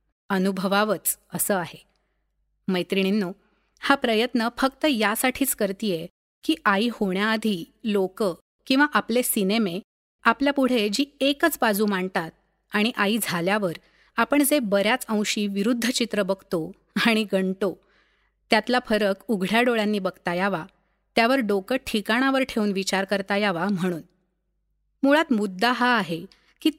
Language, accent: Marathi, native